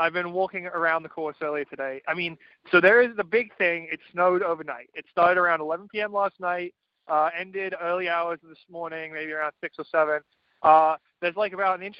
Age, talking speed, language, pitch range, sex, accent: 20-39, 210 wpm, English, 155-185 Hz, male, American